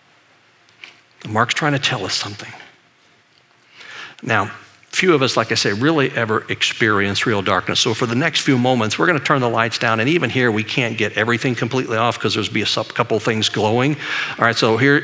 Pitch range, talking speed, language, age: 115-140 Hz, 205 wpm, English, 50-69